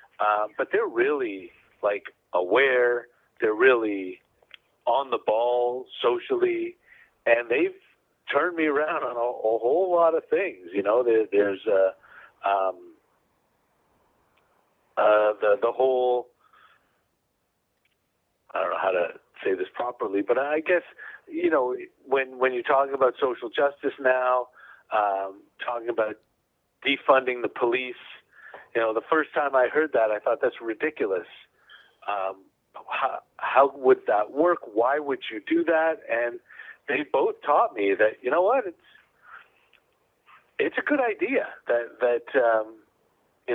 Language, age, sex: English, 50-69, male